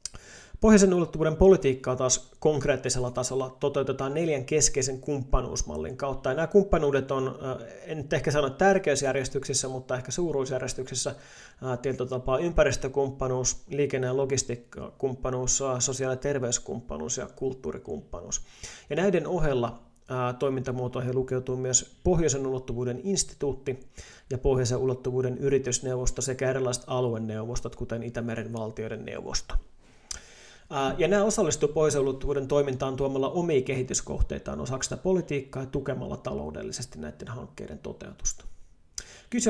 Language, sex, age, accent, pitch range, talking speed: Finnish, male, 30-49, native, 130-150 Hz, 105 wpm